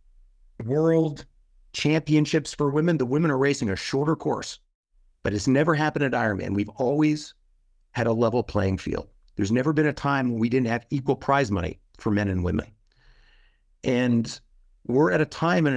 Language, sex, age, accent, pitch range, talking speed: English, male, 50-69, American, 100-135 Hz, 175 wpm